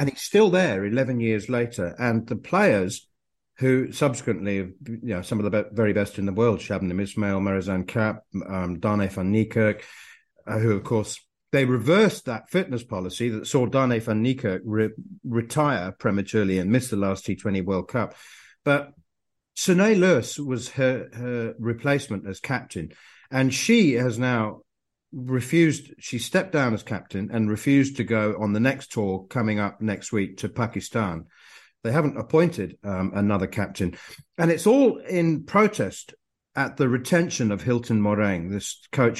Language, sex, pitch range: English, male, 100-140 Hz